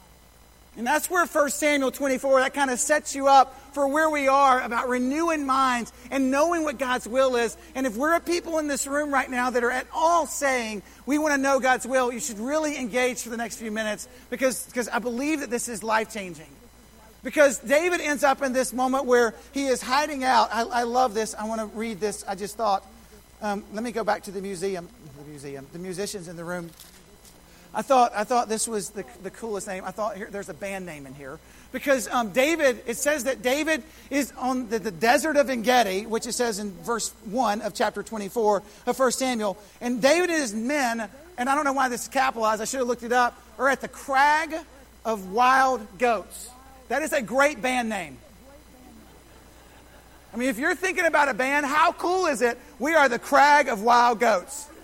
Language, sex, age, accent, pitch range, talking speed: English, male, 40-59, American, 220-275 Hz, 215 wpm